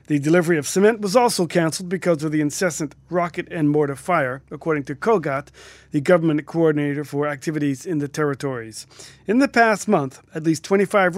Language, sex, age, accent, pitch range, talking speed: English, male, 40-59, American, 155-195 Hz, 175 wpm